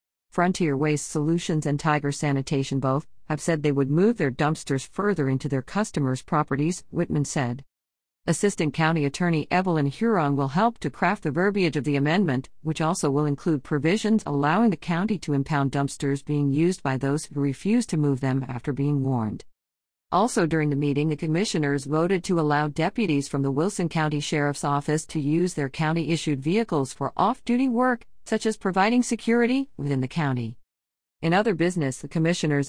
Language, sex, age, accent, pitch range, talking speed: English, female, 50-69, American, 140-180 Hz, 175 wpm